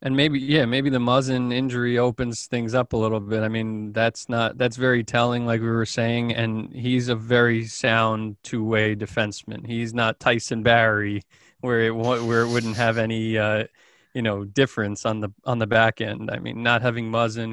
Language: English